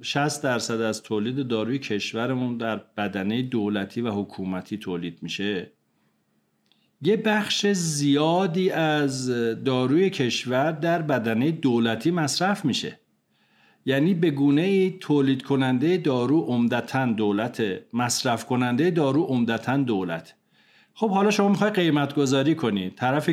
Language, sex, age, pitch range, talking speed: Persian, male, 50-69, 115-160 Hz, 115 wpm